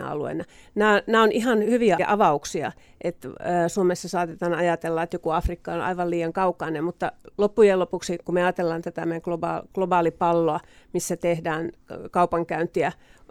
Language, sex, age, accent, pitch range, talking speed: Finnish, female, 40-59, native, 170-205 Hz, 130 wpm